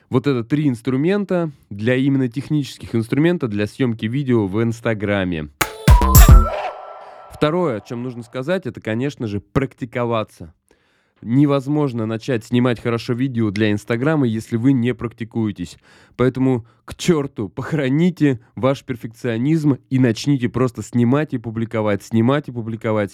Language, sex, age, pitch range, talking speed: Russian, male, 20-39, 110-140 Hz, 125 wpm